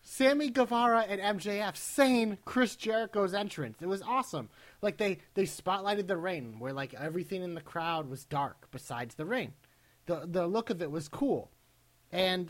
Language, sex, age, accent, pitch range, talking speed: English, male, 30-49, American, 145-200 Hz, 175 wpm